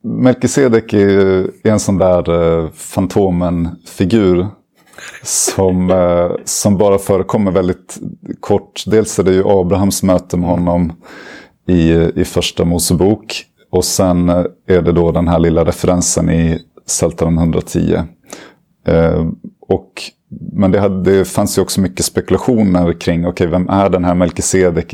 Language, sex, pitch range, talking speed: Swedish, male, 85-95 Hz, 125 wpm